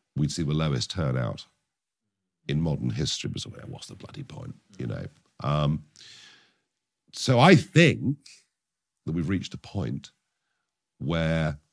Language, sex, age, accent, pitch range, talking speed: English, male, 50-69, British, 80-130 Hz, 125 wpm